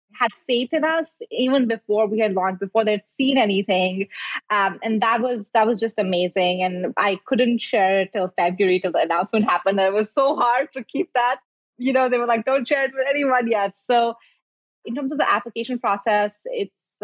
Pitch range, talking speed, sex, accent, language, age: 185-235 Hz, 210 wpm, female, Indian, English, 20-39